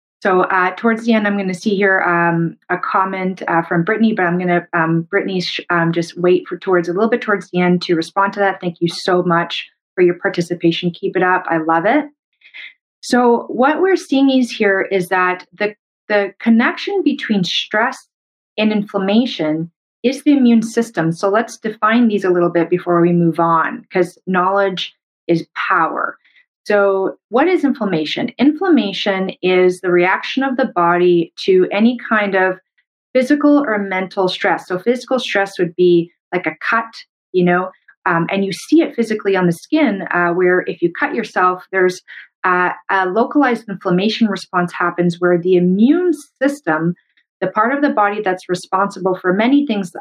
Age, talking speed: 30-49, 180 wpm